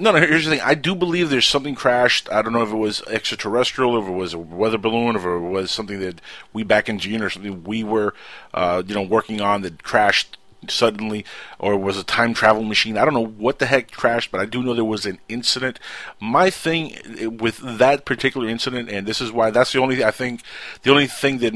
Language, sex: English, male